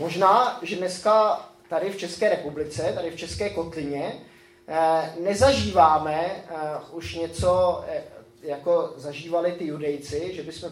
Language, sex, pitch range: Czech, male, 150-195 Hz